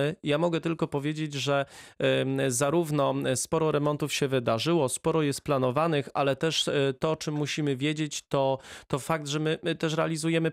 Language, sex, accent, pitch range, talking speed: Polish, male, native, 130-150 Hz, 155 wpm